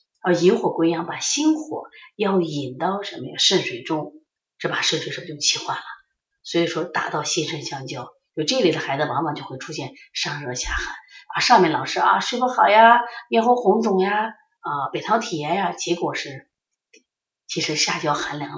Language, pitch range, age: Chinese, 155-215 Hz, 30-49